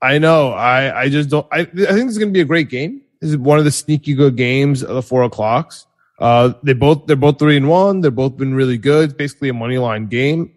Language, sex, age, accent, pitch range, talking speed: English, male, 20-39, American, 125-150 Hz, 265 wpm